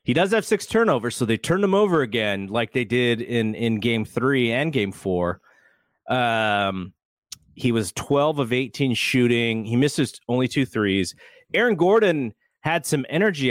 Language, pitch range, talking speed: English, 105-135 Hz, 170 wpm